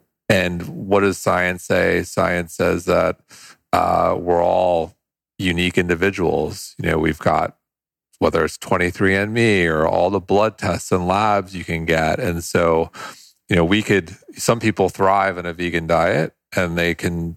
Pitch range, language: 90-100 Hz, English